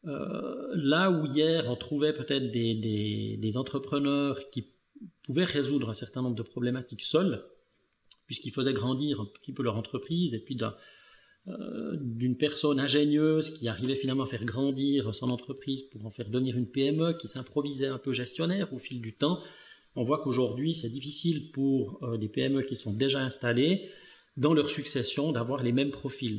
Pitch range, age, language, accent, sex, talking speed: 120-150 Hz, 30-49, French, French, male, 175 wpm